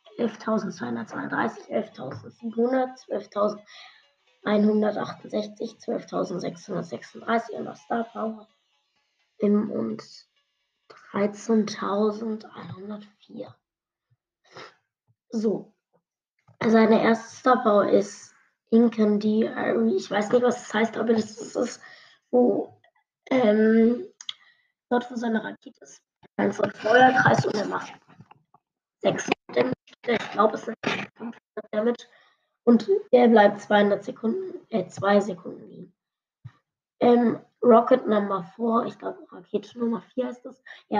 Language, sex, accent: German, female, German